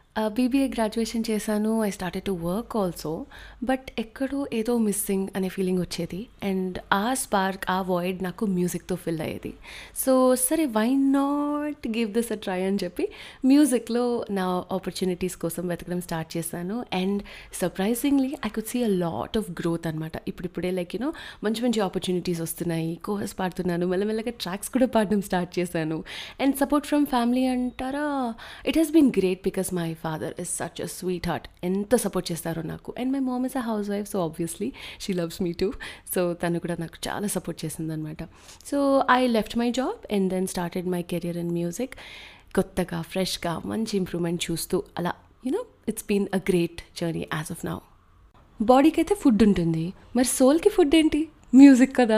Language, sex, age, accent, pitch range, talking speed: Telugu, female, 30-49, native, 175-250 Hz, 170 wpm